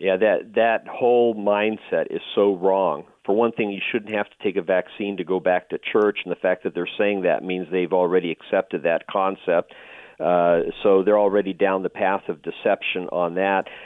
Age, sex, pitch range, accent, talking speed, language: 50-69, male, 95-115 Hz, American, 205 wpm, English